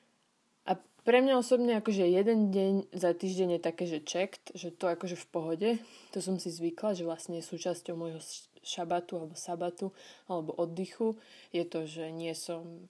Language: Slovak